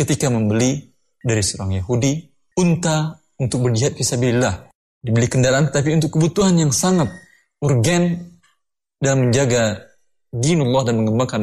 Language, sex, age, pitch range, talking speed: Indonesian, male, 20-39, 105-145 Hz, 115 wpm